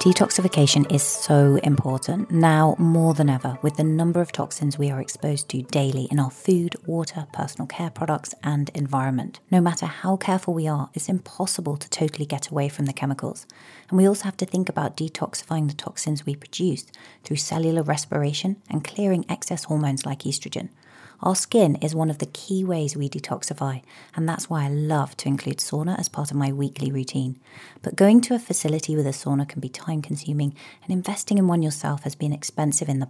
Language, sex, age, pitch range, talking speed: English, female, 30-49, 145-175 Hz, 195 wpm